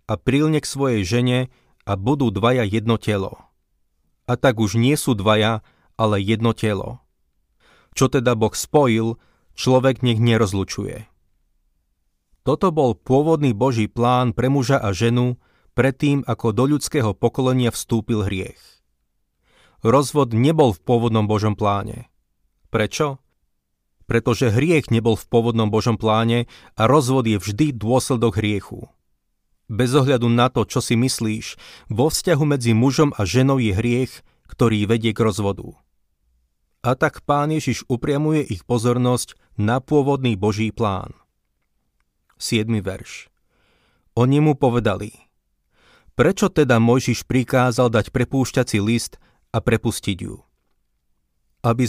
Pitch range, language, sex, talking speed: 105-130 Hz, Slovak, male, 125 wpm